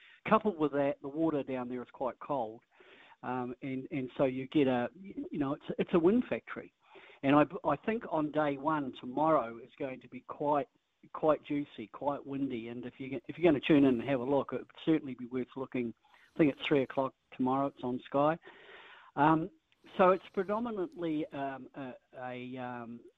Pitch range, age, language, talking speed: 130-170 Hz, 50-69, English, 200 wpm